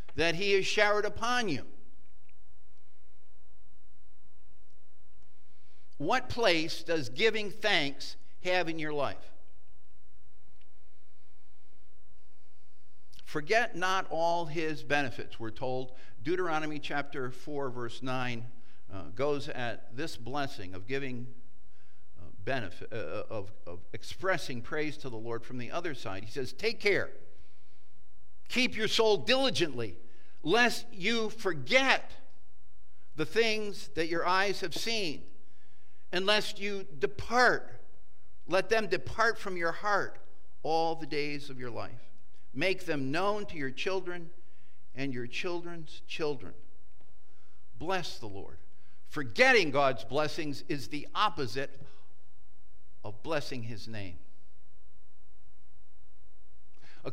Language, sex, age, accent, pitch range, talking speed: English, male, 50-69, American, 115-185 Hz, 110 wpm